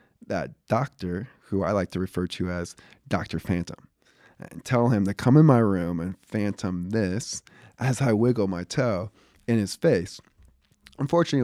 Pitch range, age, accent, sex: 90-115 Hz, 20-39, American, male